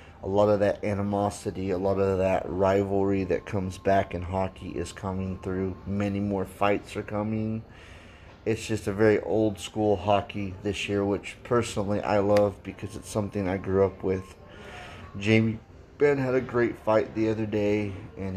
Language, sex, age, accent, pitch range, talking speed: English, male, 30-49, American, 95-105 Hz, 170 wpm